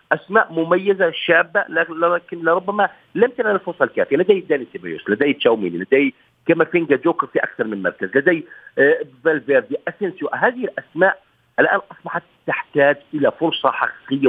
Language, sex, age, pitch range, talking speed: Arabic, male, 50-69, 145-240 Hz, 135 wpm